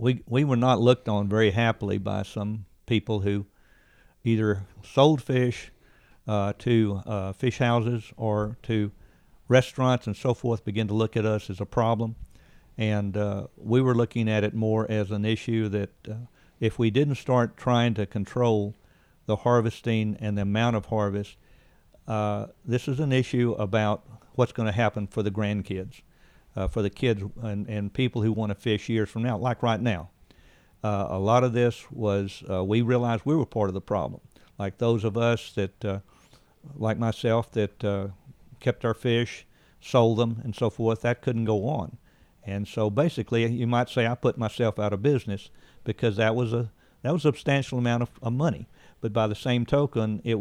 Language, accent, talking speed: English, American, 190 wpm